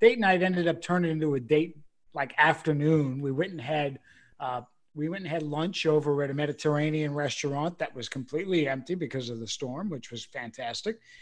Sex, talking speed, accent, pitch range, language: male, 185 wpm, American, 150-185 Hz, English